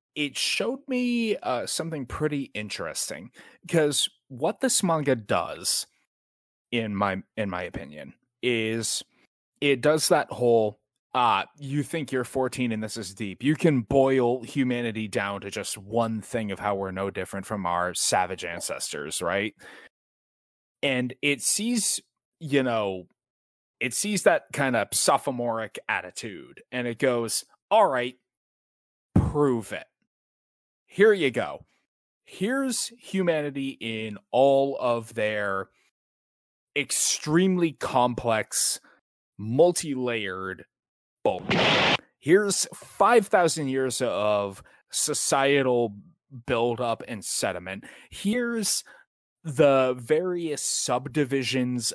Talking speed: 110 wpm